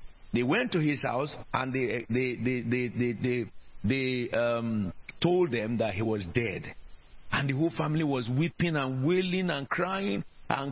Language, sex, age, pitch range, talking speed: English, male, 50-69, 110-155 Hz, 180 wpm